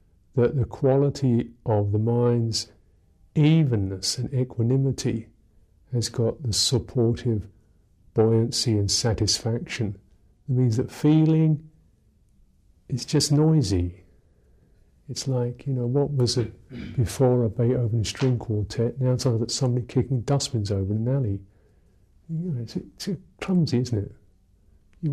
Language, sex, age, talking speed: English, male, 50-69, 125 wpm